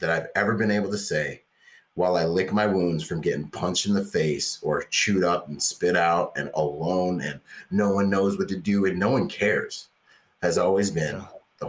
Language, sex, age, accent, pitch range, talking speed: English, male, 30-49, American, 80-95 Hz, 210 wpm